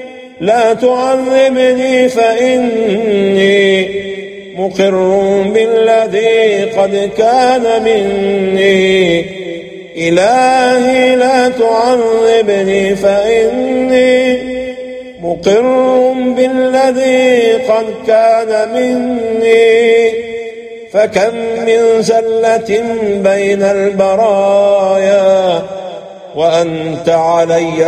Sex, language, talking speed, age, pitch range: male, English, 50 wpm, 50-69, 195-250 Hz